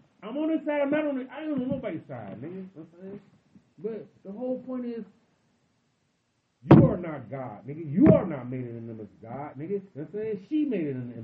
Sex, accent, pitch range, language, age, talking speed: male, American, 190-275 Hz, English, 40-59, 255 wpm